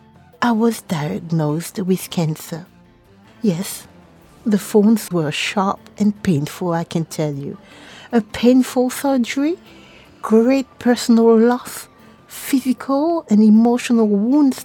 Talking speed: 105 wpm